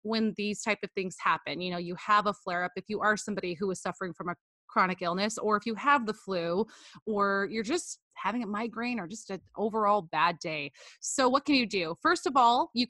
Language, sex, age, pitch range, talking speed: English, female, 20-39, 195-235 Hz, 235 wpm